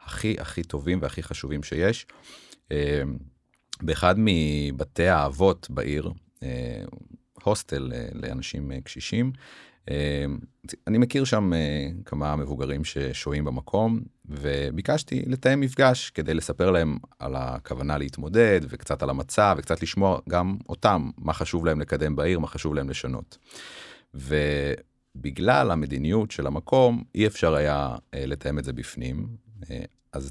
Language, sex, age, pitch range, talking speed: Hebrew, male, 40-59, 75-105 Hz, 115 wpm